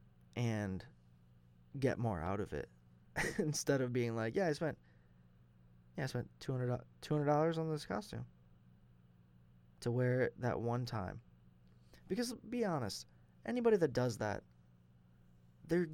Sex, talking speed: male, 130 wpm